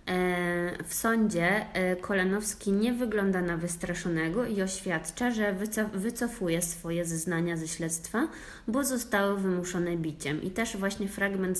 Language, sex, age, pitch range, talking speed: Polish, female, 20-39, 170-200 Hz, 125 wpm